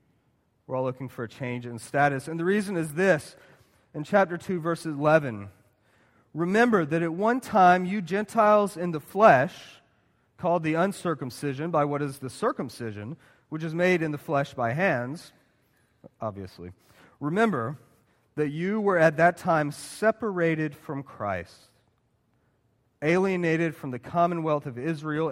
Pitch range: 130-190 Hz